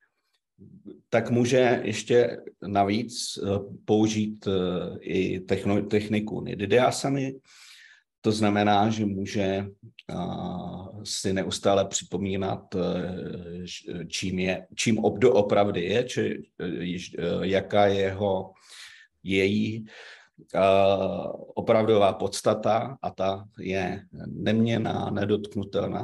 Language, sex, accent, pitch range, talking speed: Danish, male, Czech, 95-110 Hz, 80 wpm